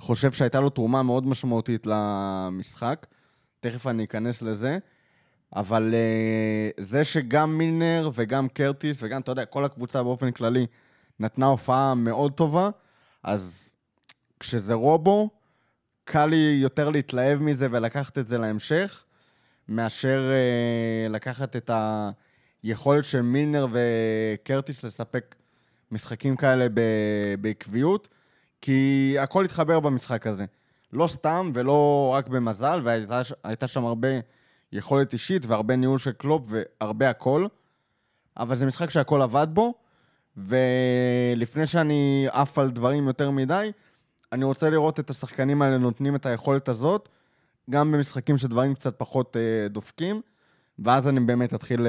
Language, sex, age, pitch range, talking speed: Hebrew, male, 20-39, 115-140 Hz, 125 wpm